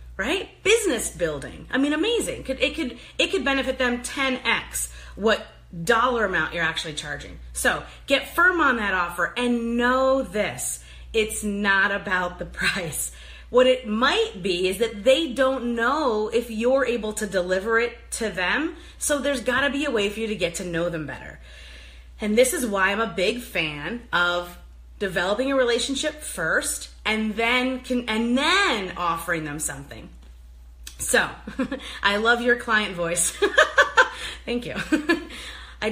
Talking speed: 155 wpm